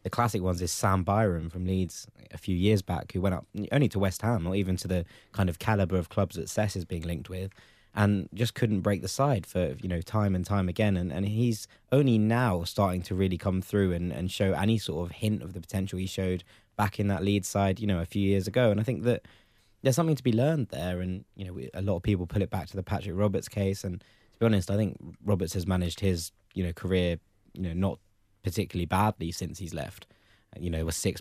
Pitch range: 90-105 Hz